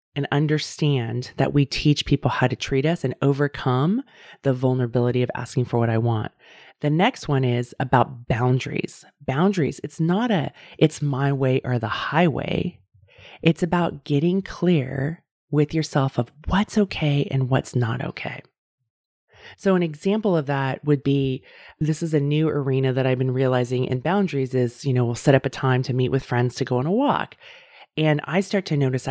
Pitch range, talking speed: 130-165 Hz, 185 wpm